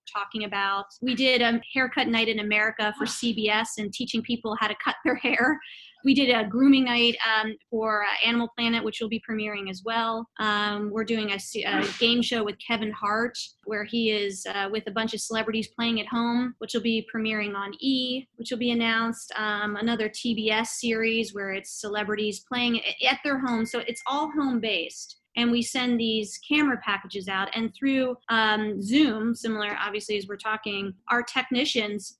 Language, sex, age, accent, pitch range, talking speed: English, female, 20-39, American, 210-240 Hz, 190 wpm